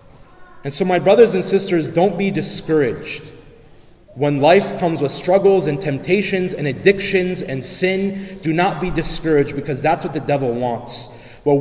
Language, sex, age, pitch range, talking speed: English, male, 30-49, 140-185 Hz, 160 wpm